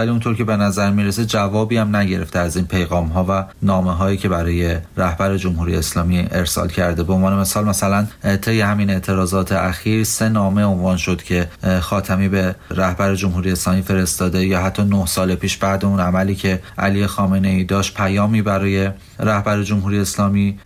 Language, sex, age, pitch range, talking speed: Persian, male, 30-49, 95-105 Hz, 170 wpm